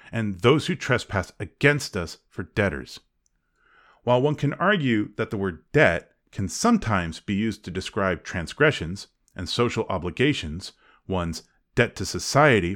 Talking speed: 140 wpm